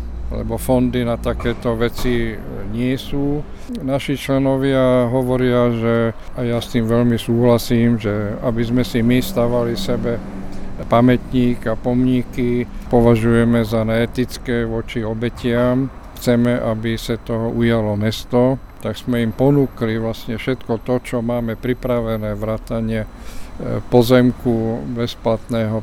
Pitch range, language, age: 115-125 Hz, Slovak, 50-69